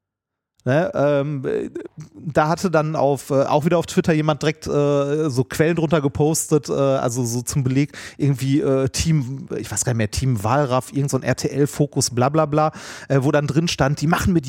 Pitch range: 125-155 Hz